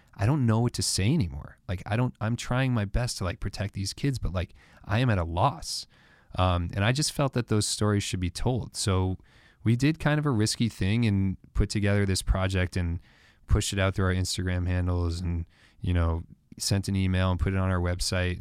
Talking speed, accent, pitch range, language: 230 wpm, American, 90-115 Hz, English